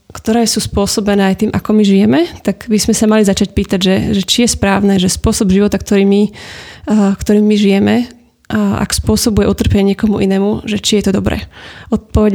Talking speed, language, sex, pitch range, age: 200 wpm, Slovak, female, 200-220 Hz, 20-39